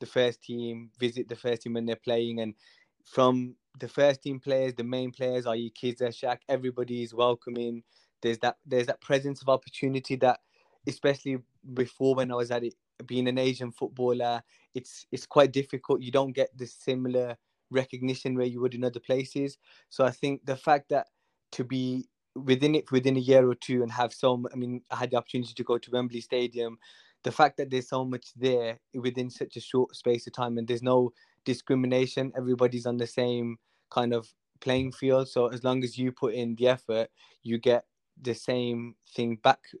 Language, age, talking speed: English, 20-39, 195 wpm